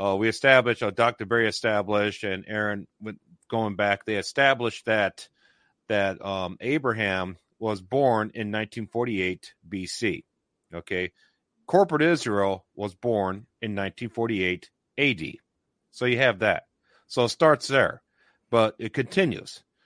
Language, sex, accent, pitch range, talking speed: English, male, American, 105-135 Hz, 125 wpm